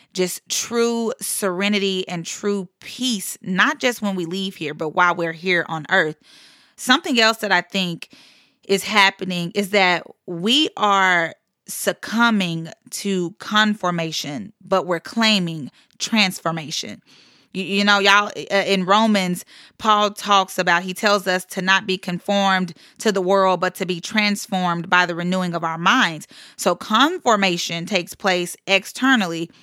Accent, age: American, 30-49